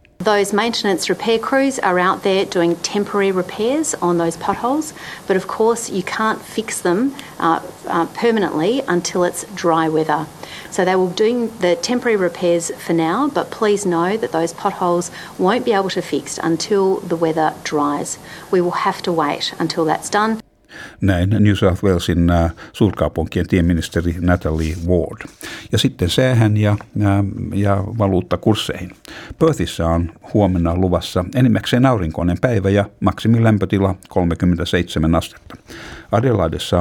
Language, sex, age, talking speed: Finnish, female, 50-69, 145 wpm